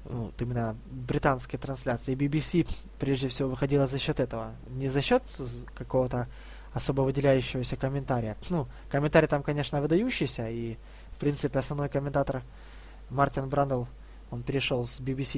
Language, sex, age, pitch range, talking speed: Russian, male, 20-39, 125-145 Hz, 135 wpm